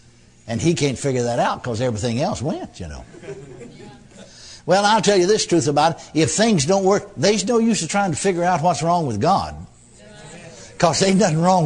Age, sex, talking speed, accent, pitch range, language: 60-79, male, 205 wpm, American, 120-185 Hz, English